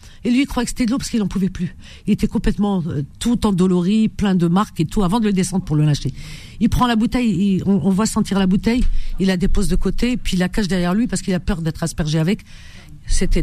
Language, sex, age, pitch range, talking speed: French, female, 50-69, 145-210 Hz, 275 wpm